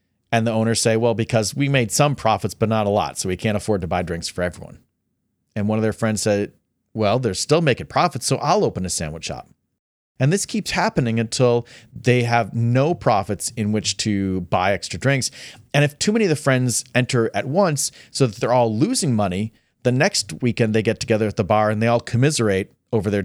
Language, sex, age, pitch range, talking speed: English, male, 40-59, 105-140 Hz, 220 wpm